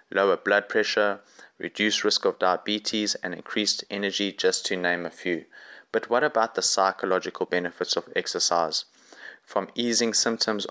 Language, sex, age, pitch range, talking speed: English, male, 20-39, 100-120 Hz, 145 wpm